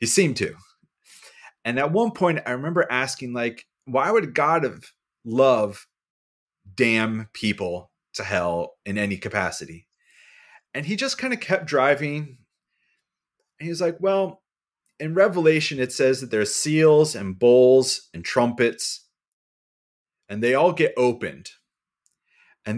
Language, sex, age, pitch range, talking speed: English, male, 30-49, 110-180 Hz, 135 wpm